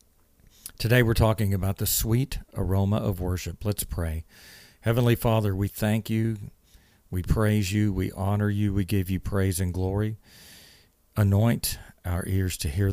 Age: 40-59